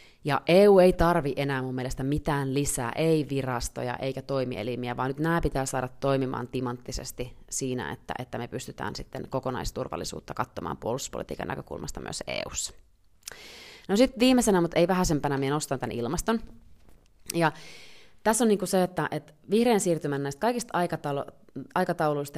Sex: female